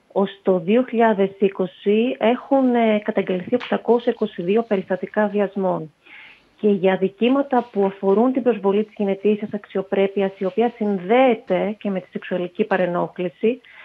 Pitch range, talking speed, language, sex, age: 195-245 Hz, 115 wpm, Greek, female, 30-49